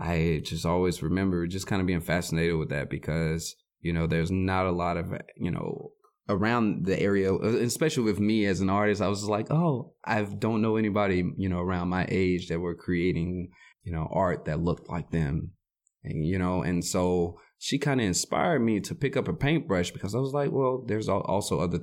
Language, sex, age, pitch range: English, male, 20-39, 85-100 Hz